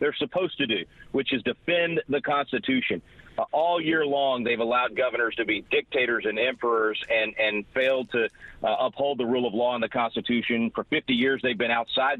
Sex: male